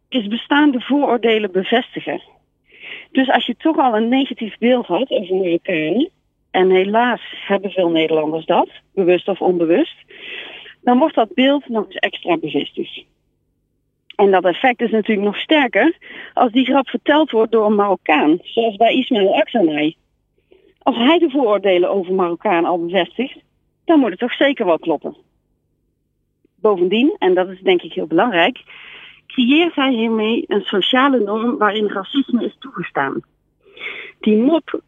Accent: Dutch